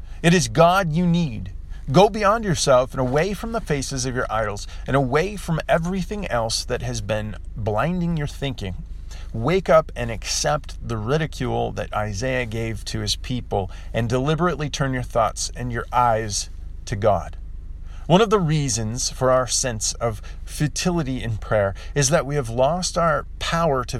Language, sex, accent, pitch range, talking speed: English, male, American, 95-140 Hz, 170 wpm